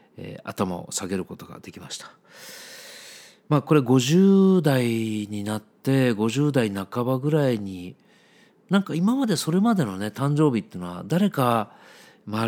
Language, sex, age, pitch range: Japanese, male, 40-59, 105-160 Hz